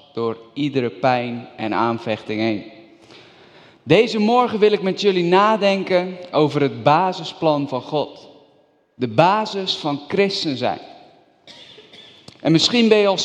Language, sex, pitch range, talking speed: Dutch, male, 150-195 Hz, 125 wpm